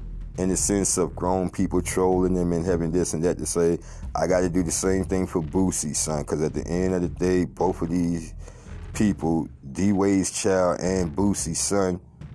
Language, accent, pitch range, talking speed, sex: English, American, 80-95 Hz, 205 wpm, male